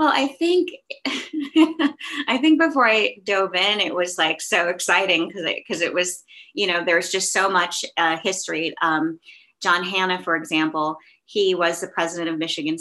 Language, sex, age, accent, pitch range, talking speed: English, female, 30-49, American, 155-180 Hz, 175 wpm